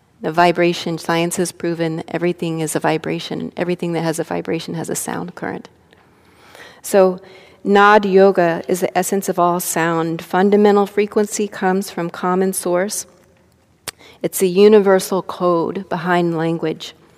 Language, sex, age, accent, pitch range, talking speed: English, female, 30-49, American, 170-200 Hz, 135 wpm